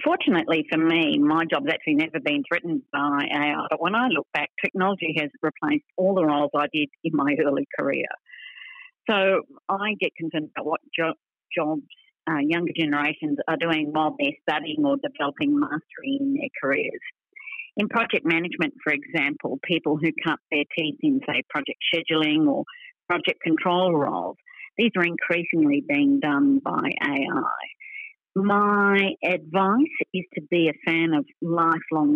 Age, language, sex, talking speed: 50-69, English, female, 155 wpm